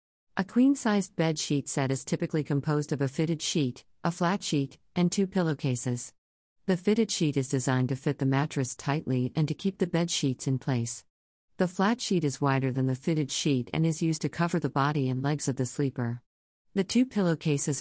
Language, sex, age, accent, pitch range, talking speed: English, female, 50-69, American, 135-165 Hz, 200 wpm